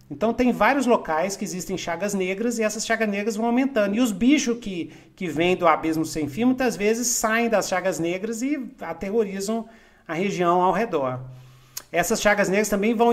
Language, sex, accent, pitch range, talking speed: Portuguese, male, Brazilian, 155-225 Hz, 185 wpm